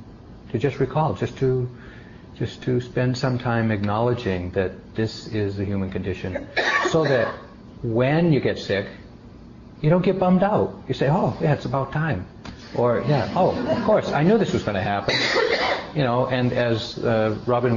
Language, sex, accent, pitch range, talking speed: English, male, American, 100-135 Hz, 180 wpm